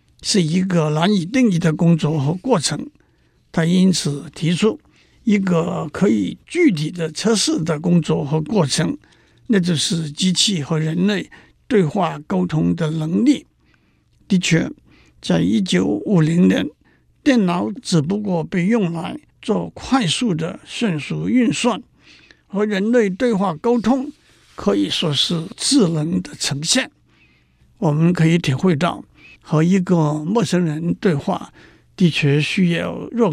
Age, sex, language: 60-79, male, Chinese